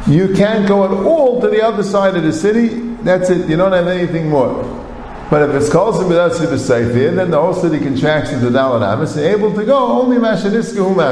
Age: 50-69